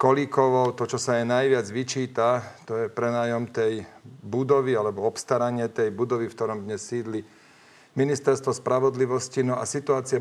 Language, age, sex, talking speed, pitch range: Slovak, 40-59, male, 145 wpm, 115-135 Hz